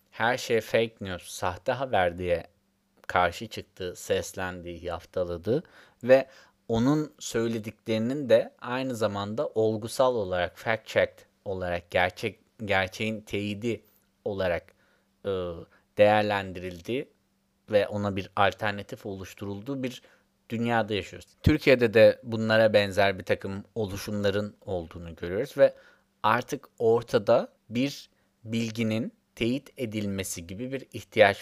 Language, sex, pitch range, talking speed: Turkish, male, 95-115 Hz, 105 wpm